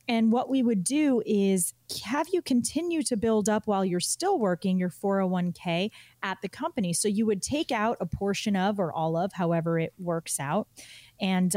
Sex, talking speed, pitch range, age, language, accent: female, 190 wpm, 175-220 Hz, 30-49, English, American